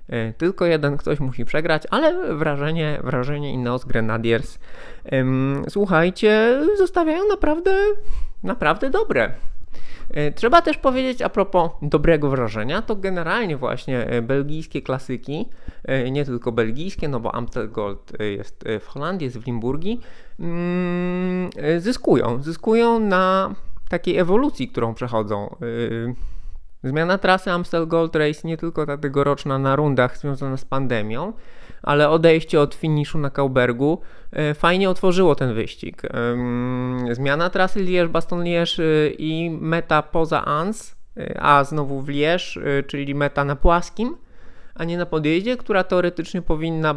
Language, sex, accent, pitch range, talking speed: Polish, male, native, 130-175 Hz, 125 wpm